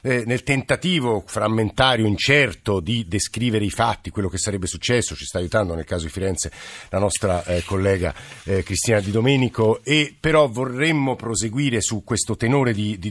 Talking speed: 165 wpm